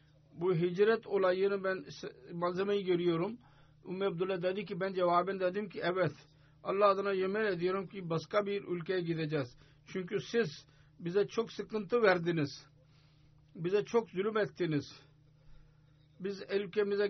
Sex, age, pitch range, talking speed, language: male, 50-69, 150-195 Hz, 125 wpm, Turkish